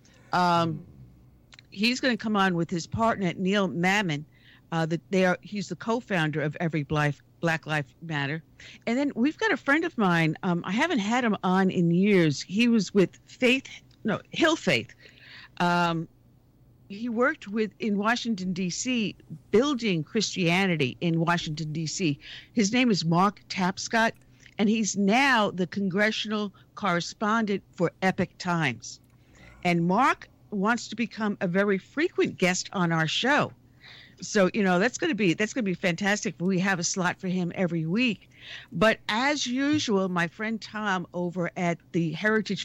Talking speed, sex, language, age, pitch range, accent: 160 wpm, female, English, 50-69, 165-210 Hz, American